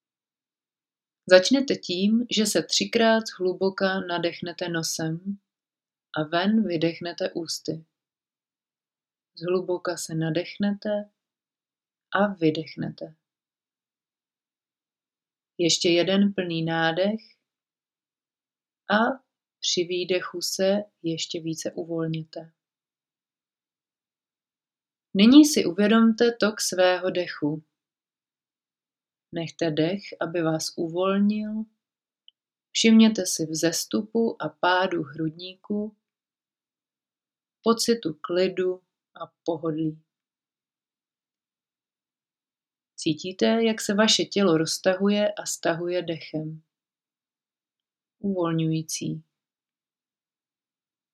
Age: 30-49